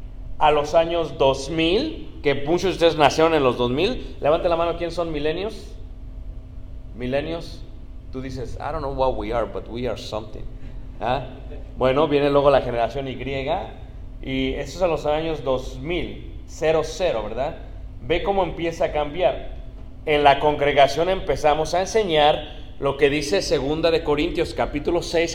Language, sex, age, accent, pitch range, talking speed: Spanish, male, 30-49, Mexican, 130-175 Hz, 155 wpm